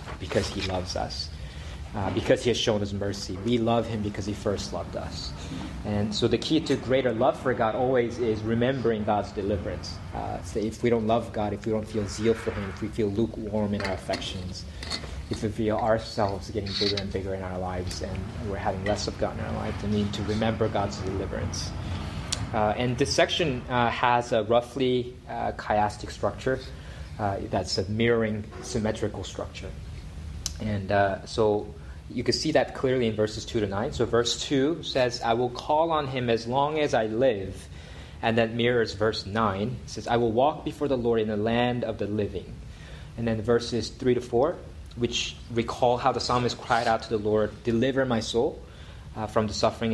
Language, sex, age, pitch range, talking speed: English, male, 30-49, 95-115 Hz, 200 wpm